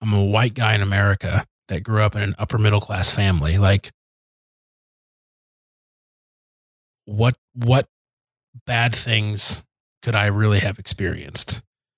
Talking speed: 120 wpm